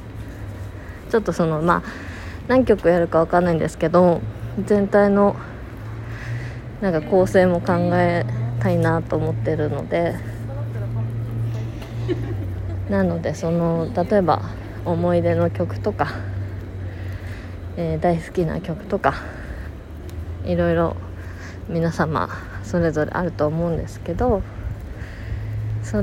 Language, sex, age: Japanese, female, 20-39